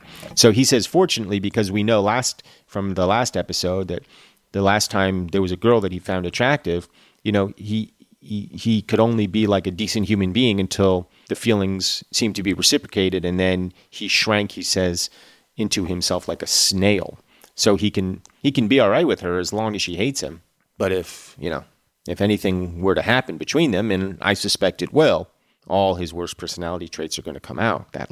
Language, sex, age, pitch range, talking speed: English, male, 30-49, 90-110 Hz, 205 wpm